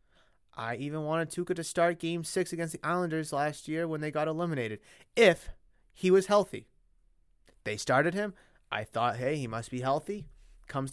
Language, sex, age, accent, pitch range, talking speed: English, male, 30-49, American, 120-165 Hz, 175 wpm